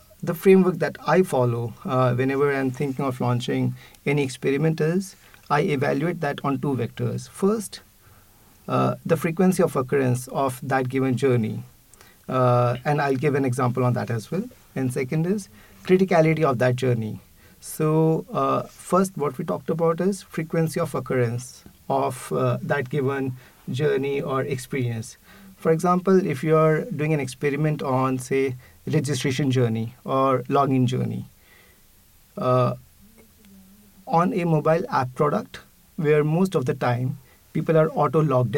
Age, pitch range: 50-69, 125-160 Hz